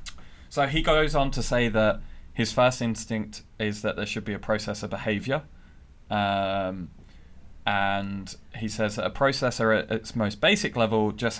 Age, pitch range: 20-39, 100-120 Hz